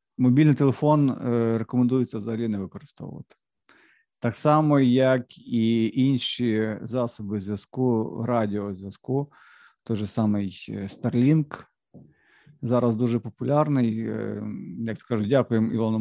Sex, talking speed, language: male, 90 wpm, Ukrainian